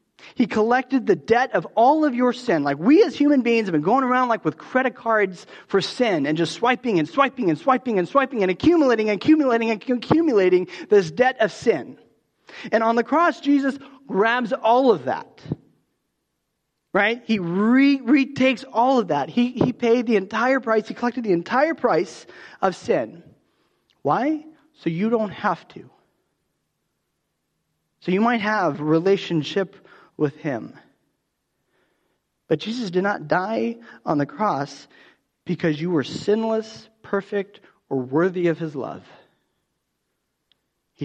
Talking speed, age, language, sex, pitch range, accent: 150 wpm, 30-49, English, male, 175-250 Hz, American